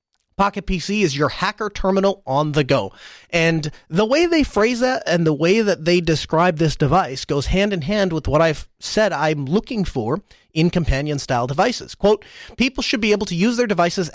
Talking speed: 200 wpm